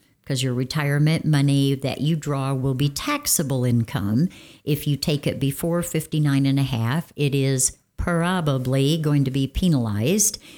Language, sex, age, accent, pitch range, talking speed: English, female, 60-79, American, 135-180 Hz, 155 wpm